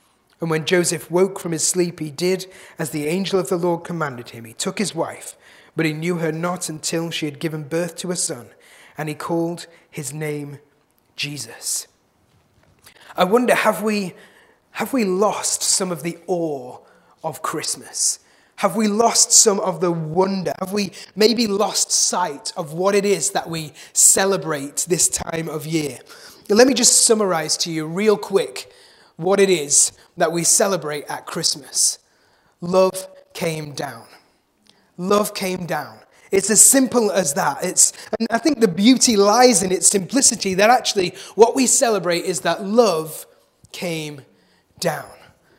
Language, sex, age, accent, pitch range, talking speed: English, male, 30-49, British, 165-210 Hz, 160 wpm